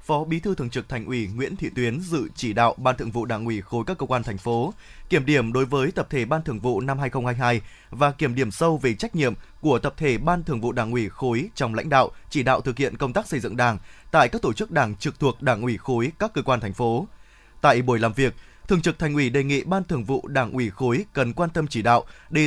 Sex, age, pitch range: male, 20-39, 125-165 Hz